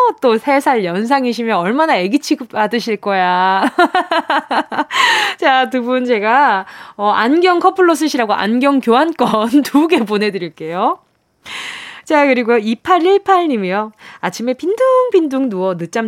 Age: 20-39